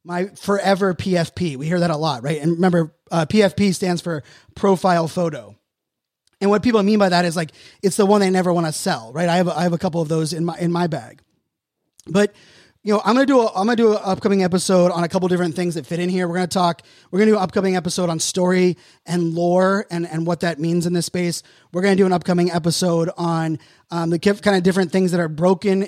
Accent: American